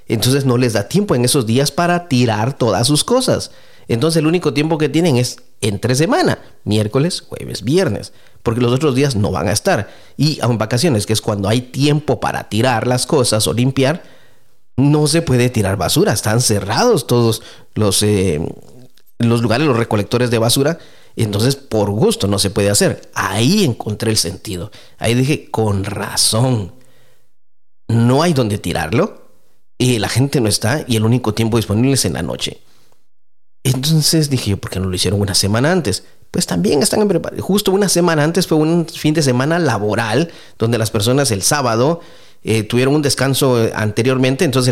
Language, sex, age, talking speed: English, male, 40-59, 180 wpm